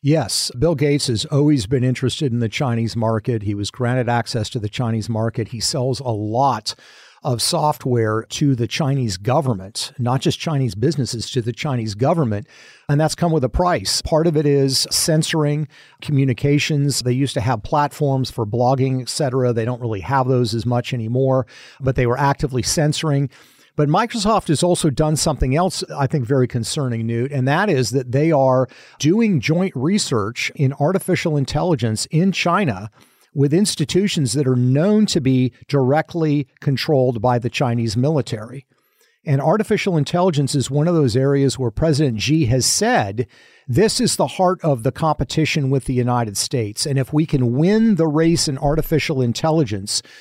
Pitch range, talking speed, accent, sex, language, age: 125-160 Hz, 170 wpm, American, male, English, 50-69